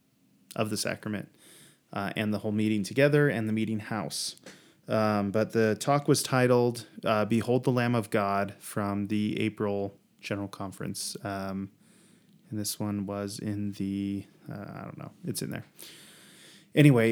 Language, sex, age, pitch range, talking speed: English, male, 20-39, 105-130 Hz, 160 wpm